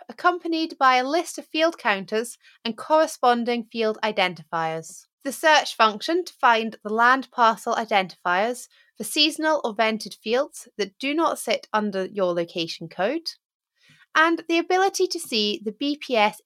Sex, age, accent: female, 30-49, British